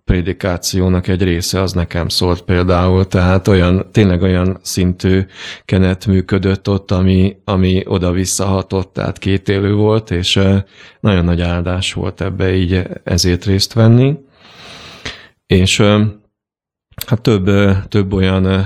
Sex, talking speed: male, 120 wpm